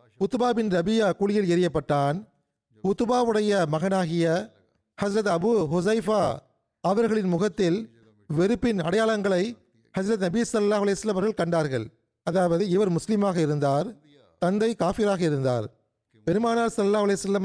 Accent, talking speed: native, 95 wpm